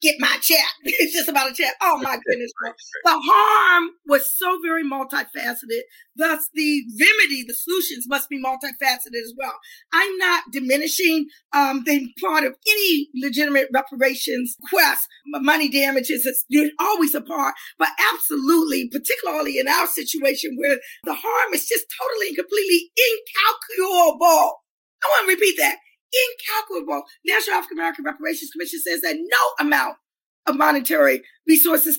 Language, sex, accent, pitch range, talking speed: English, female, American, 295-430 Hz, 145 wpm